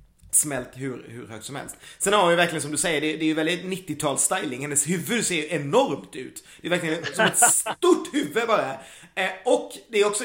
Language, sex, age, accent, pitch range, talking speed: Swedish, male, 30-49, native, 145-200 Hz, 235 wpm